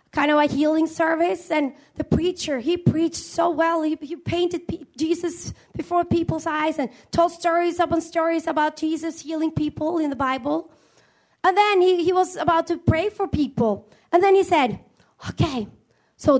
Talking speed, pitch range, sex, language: 175 wpm, 315-405 Hz, female, English